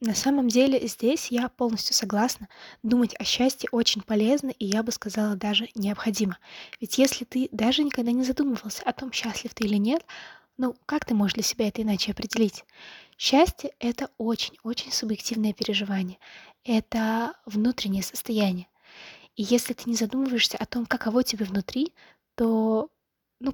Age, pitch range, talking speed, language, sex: 20-39, 215-250 Hz, 155 wpm, English, female